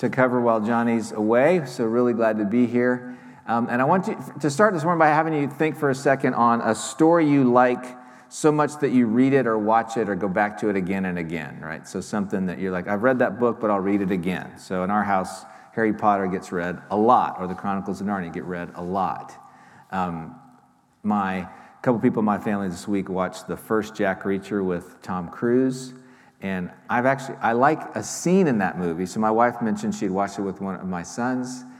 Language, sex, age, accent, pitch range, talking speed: English, male, 40-59, American, 95-125 Hz, 230 wpm